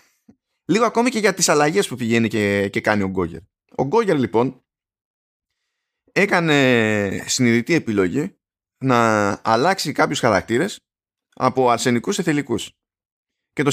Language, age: Greek, 20-39